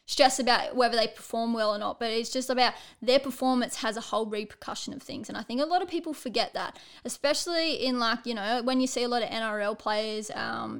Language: English